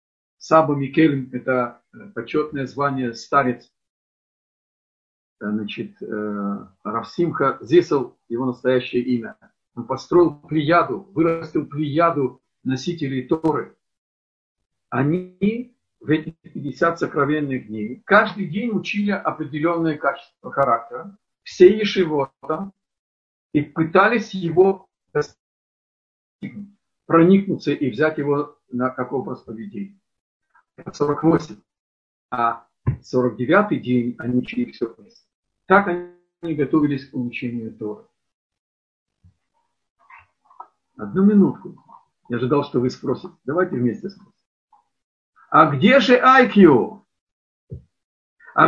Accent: native